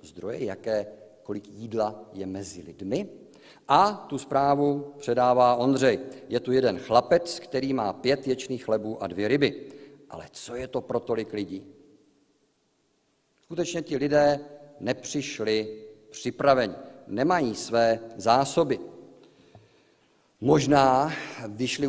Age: 50-69